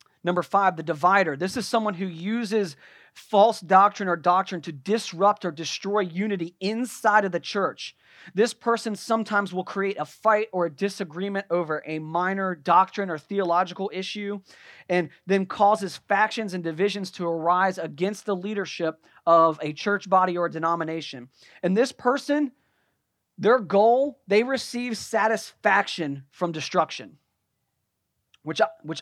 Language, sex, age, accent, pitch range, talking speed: English, male, 30-49, American, 165-210 Hz, 140 wpm